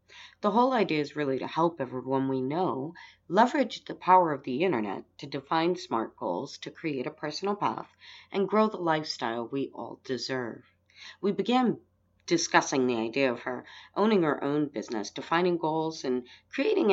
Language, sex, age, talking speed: English, female, 40-59, 165 wpm